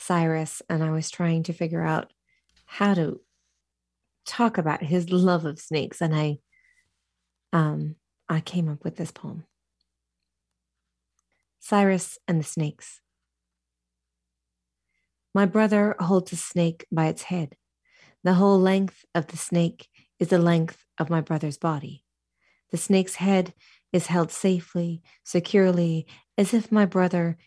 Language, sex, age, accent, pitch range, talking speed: English, female, 30-49, American, 160-185 Hz, 135 wpm